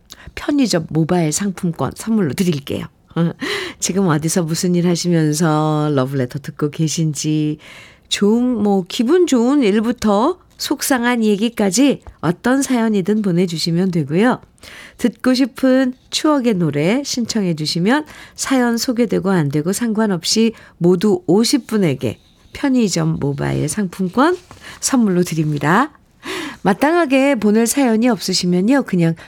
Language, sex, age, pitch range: Korean, female, 50-69, 165-245 Hz